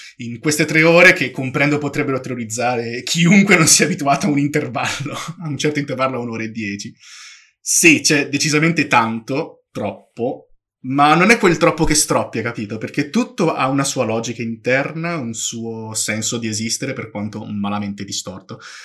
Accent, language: native, Italian